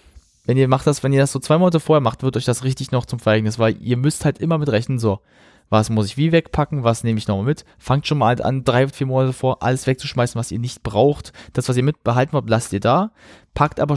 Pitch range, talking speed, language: 110-130 Hz, 265 wpm, German